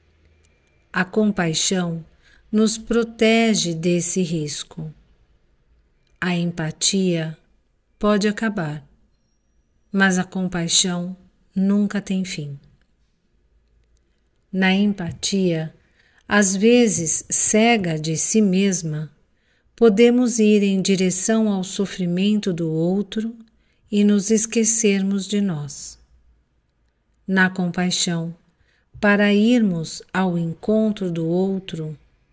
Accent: Brazilian